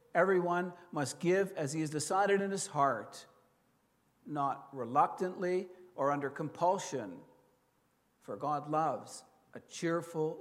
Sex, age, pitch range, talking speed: male, 60-79, 165-200 Hz, 115 wpm